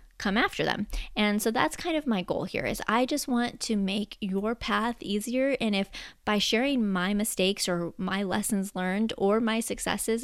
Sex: female